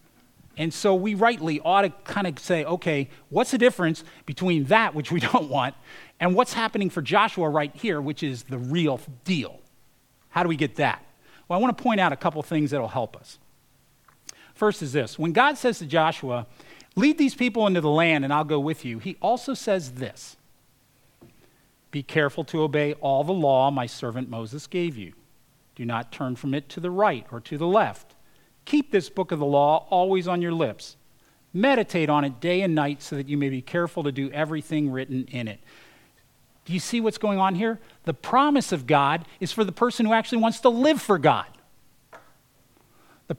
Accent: American